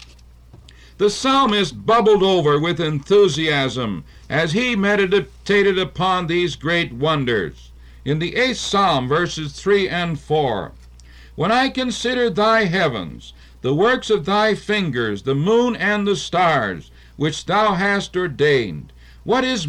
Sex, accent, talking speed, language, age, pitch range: male, American, 130 wpm, English, 60-79, 125-205 Hz